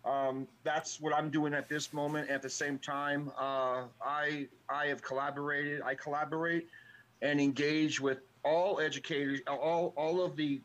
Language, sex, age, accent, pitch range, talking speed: Russian, male, 40-59, American, 140-180 Hz, 160 wpm